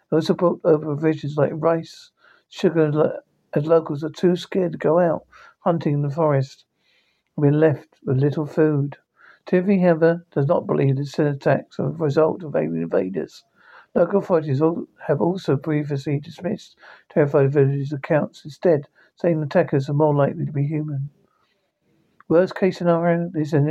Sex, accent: male, British